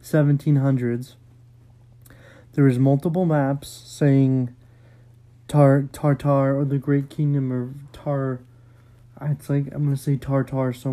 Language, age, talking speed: English, 30-49, 130 wpm